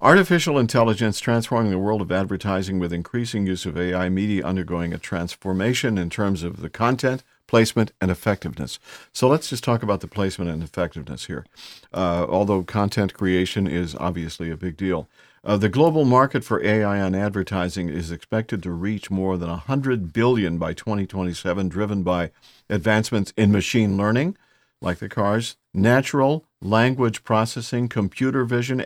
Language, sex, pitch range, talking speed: English, male, 90-115 Hz, 155 wpm